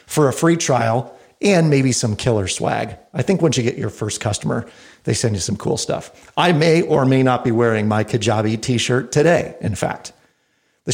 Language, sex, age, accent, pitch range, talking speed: English, male, 40-59, American, 115-140 Hz, 205 wpm